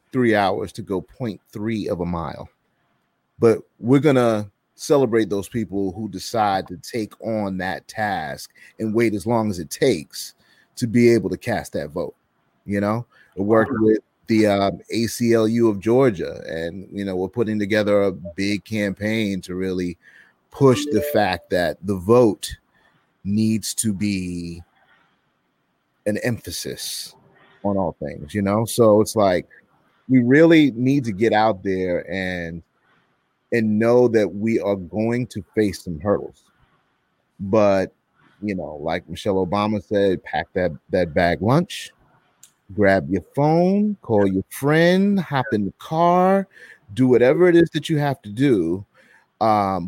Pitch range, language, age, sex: 95-120 Hz, English, 30-49, male